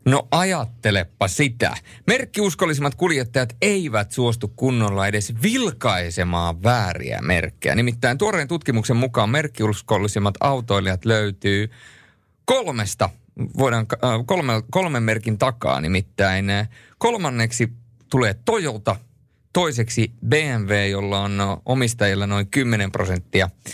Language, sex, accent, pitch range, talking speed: Finnish, male, native, 100-130 Hz, 90 wpm